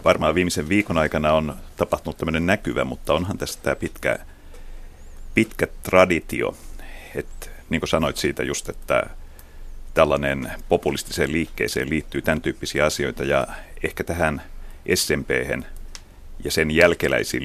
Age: 30-49